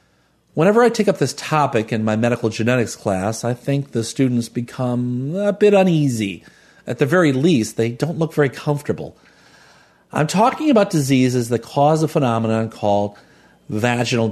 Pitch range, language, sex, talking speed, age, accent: 105-140 Hz, English, male, 160 wpm, 40-59, American